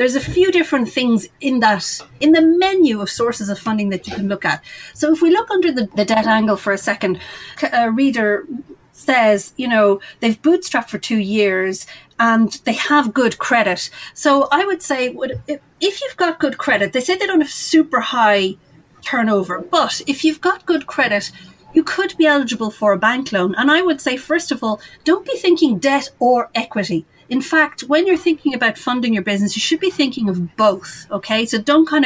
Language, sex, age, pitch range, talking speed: English, female, 40-59, 215-310 Hz, 205 wpm